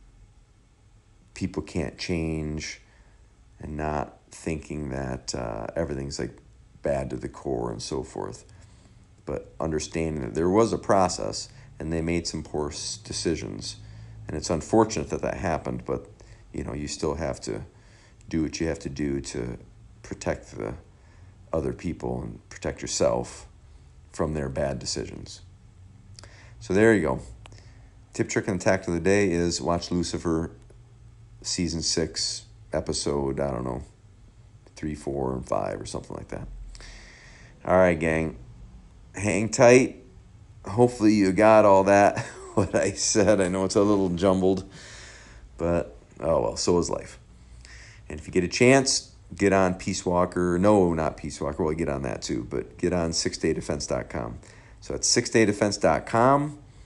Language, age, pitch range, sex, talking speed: English, 50-69, 80-105 Hz, male, 150 wpm